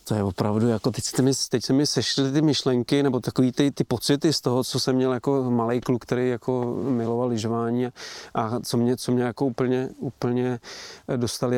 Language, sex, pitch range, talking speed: Czech, male, 120-130 Hz, 190 wpm